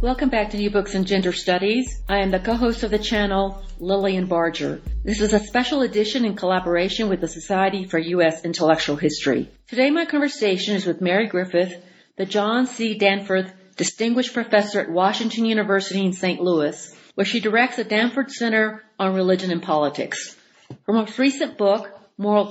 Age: 50-69